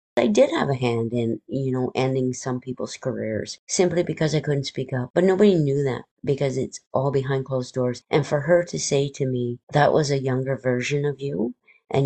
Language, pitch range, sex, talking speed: French, 125-145 Hz, female, 215 wpm